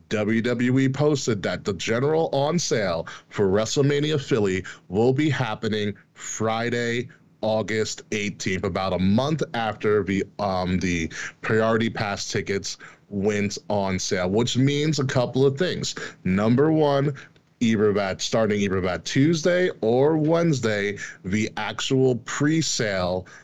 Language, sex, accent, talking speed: English, male, American, 125 wpm